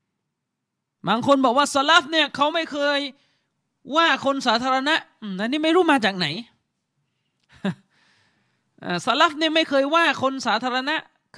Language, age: Thai, 20-39